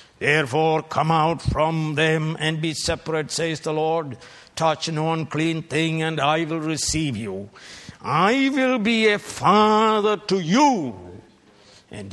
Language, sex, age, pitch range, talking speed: English, male, 60-79, 125-180 Hz, 140 wpm